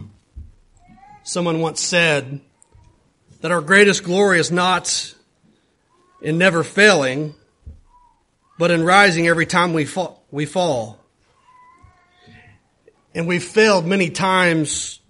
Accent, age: American, 40-59